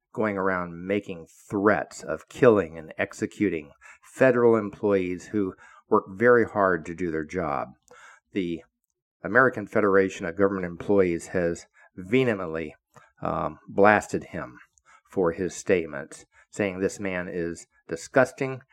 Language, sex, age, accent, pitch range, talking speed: English, male, 50-69, American, 90-110 Hz, 115 wpm